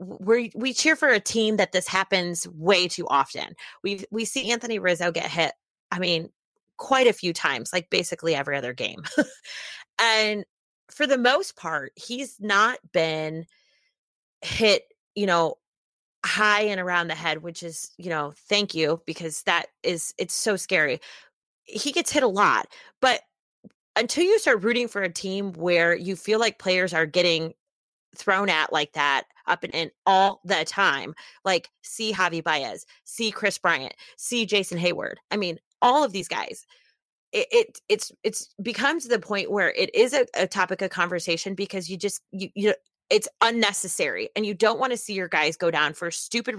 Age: 30-49